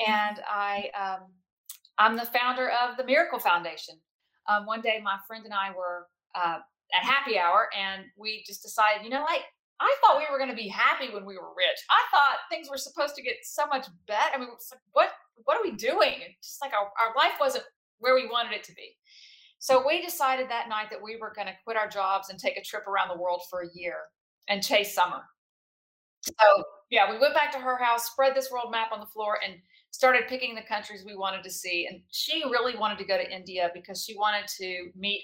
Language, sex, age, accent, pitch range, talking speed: English, female, 40-59, American, 195-270 Hz, 230 wpm